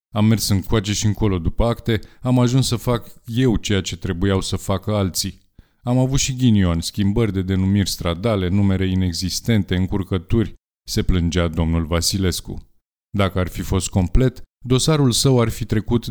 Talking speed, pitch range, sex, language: 160 wpm, 90-115 Hz, male, Romanian